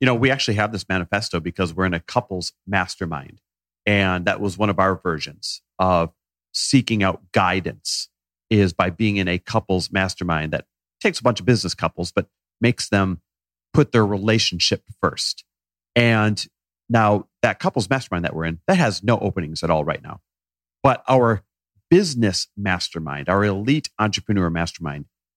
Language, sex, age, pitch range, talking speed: English, male, 40-59, 85-120 Hz, 165 wpm